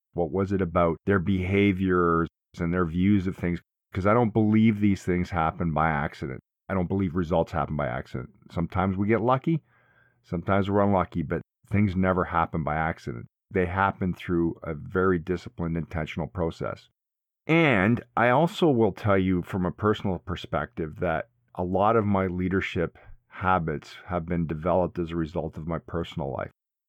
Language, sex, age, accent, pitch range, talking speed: English, male, 40-59, American, 85-100 Hz, 165 wpm